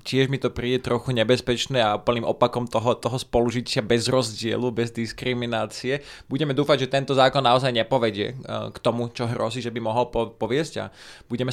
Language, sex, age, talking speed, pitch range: Slovak, male, 20-39, 170 wpm, 120-140 Hz